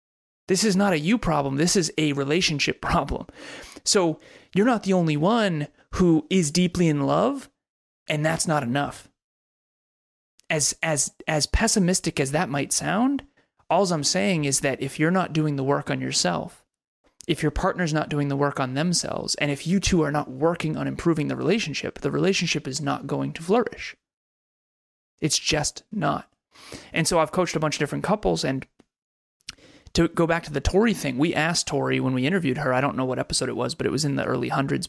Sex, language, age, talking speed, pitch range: male, English, 30-49, 200 wpm, 140-175 Hz